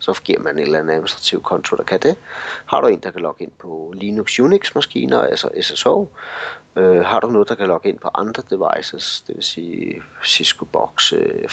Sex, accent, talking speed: male, native, 205 wpm